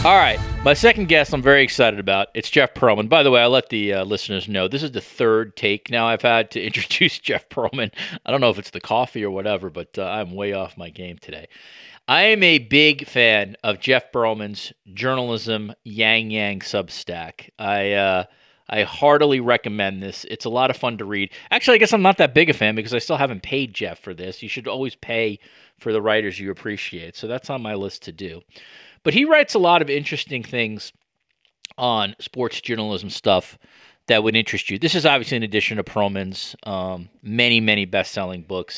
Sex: male